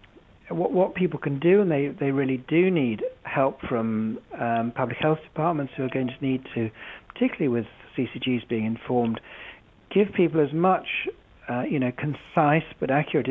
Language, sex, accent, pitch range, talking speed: English, male, British, 120-160 Hz, 170 wpm